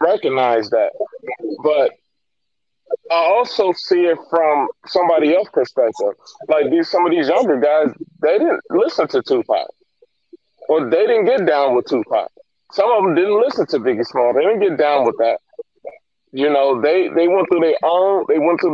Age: 30-49